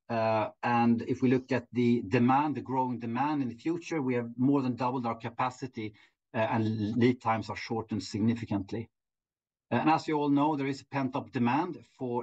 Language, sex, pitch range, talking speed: Swedish, male, 115-135 Hz, 190 wpm